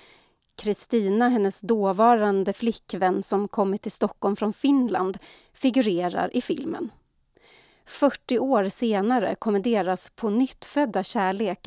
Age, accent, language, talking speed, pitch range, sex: 30-49, native, Swedish, 115 wpm, 195-235 Hz, female